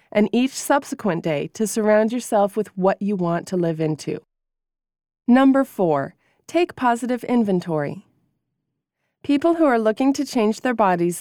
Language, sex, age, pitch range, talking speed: English, female, 20-39, 185-250 Hz, 145 wpm